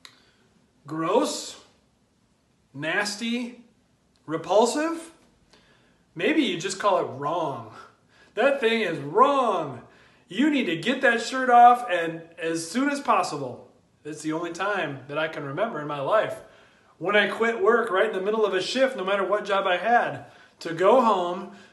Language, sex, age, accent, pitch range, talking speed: English, male, 30-49, American, 165-235 Hz, 155 wpm